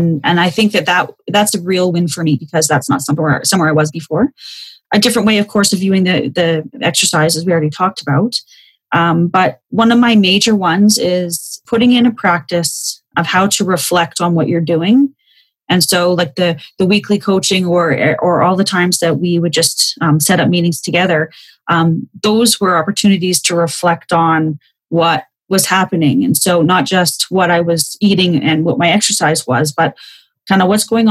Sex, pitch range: female, 165-205 Hz